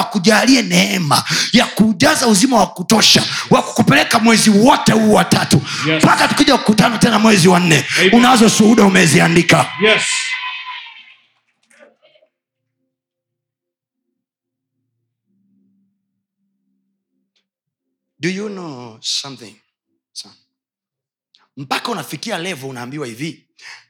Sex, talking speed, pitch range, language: male, 40 wpm, 150-215 Hz, Swahili